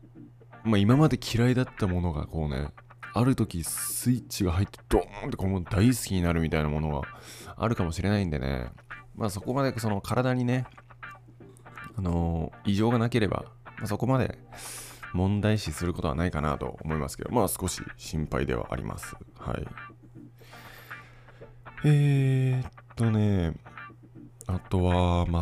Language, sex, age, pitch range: Japanese, male, 20-39, 85-120 Hz